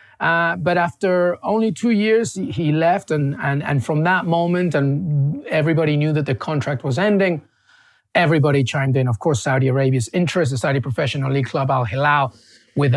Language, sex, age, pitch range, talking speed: English, male, 30-49, 130-155 Hz, 170 wpm